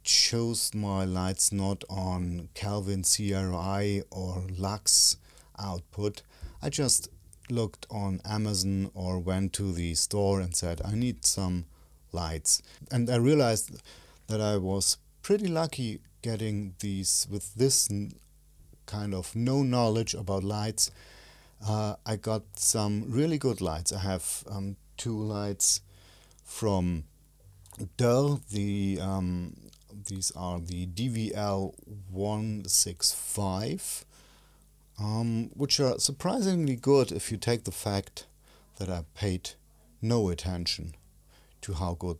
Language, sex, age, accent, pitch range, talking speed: English, male, 40-59, German, 90-110 Hz, 120 wpm